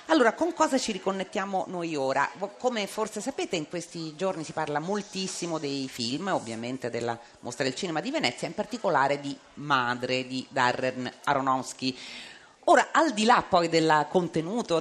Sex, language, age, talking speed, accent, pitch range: female, Italian, 40-59, 160 wpm, native, 140-205 Hz